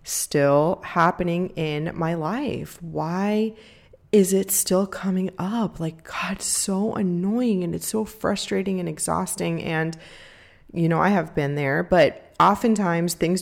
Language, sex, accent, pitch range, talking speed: English, female, American, 160-195 Hz, 140 wpm